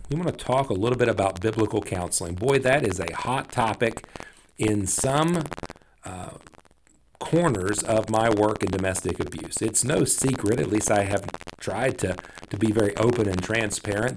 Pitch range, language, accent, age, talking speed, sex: 95-120 Hz, English, American, 40-59, 170 wpm, male